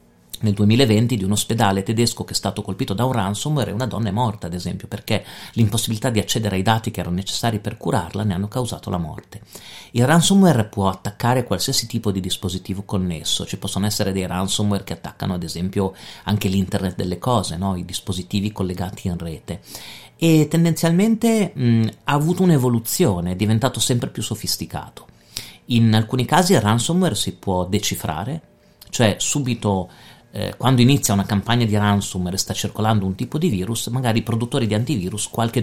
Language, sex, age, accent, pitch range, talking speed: Italian, male, 40-59, native, 95-120 Hz, 175 wpm